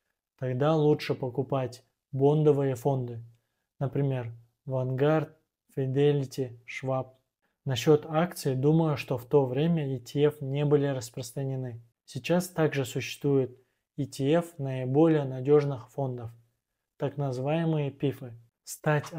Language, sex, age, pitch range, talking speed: Russian, male, 20-39, 130-150 Hz, 95 wpm